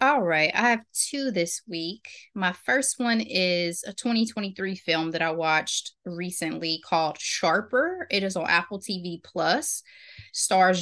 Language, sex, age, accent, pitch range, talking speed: English, female, 20-39, American, 170-205 Hz, 150 wpm